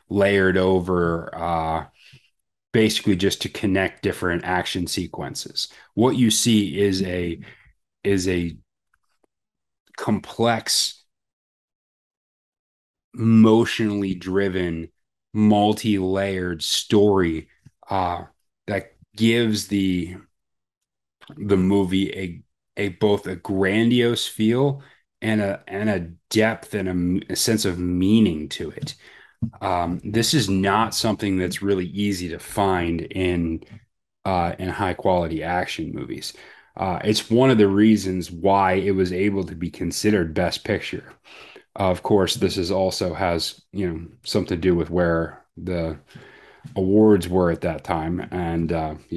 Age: 30-49